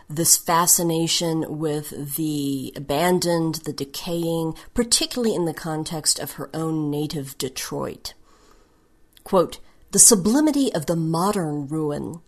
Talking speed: 110 wpm